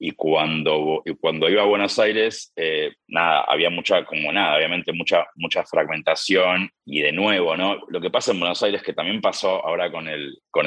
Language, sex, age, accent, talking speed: Spanish, male, 30-49, Argentinian, 195 wpm